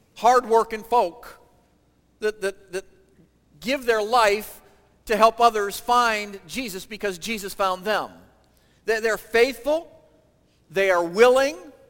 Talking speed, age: 115 wpm, 50-69